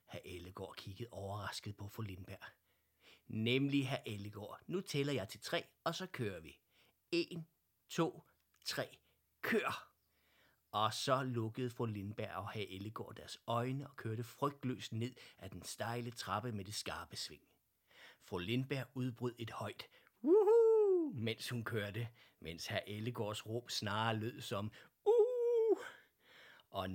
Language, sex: Danish, male